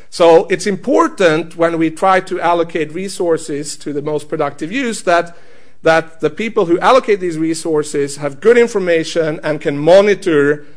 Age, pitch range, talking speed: 50-69, 145-185 Hz, 155 wpm